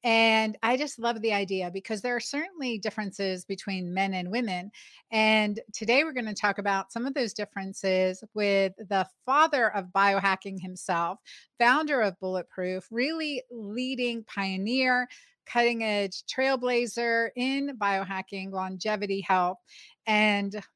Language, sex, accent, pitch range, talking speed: English, female, American, 195-235 Hz, 135 wpm